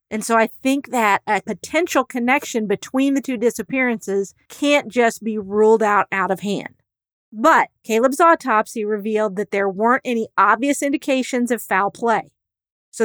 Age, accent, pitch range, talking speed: 40-59, American, 200-255 Hz, 155 wpm